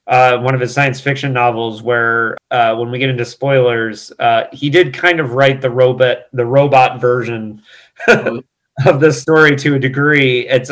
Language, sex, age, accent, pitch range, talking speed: English, male, 30-49, American, 125-150 Hz, 180 wpm